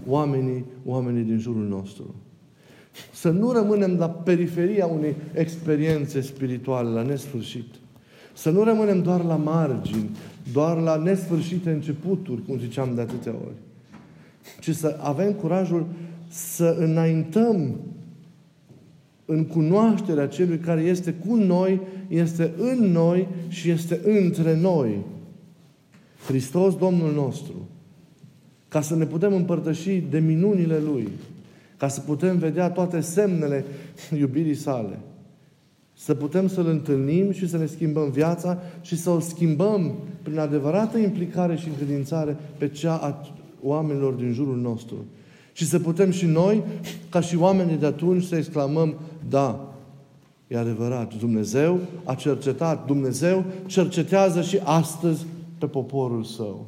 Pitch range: 145-180 Hz